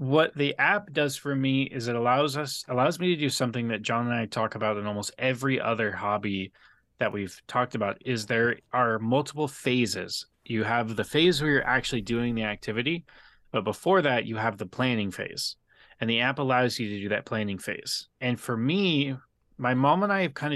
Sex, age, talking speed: male, 20-39, 210 wpm